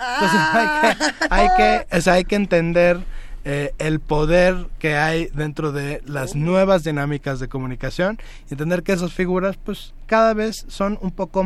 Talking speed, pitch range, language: 175 wpm, 145-175 Hz, Spanish